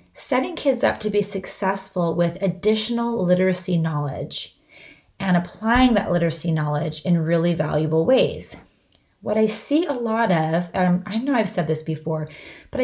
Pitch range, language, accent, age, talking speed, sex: 170-220 Hz, English, American, 20-39, 155 wpm, female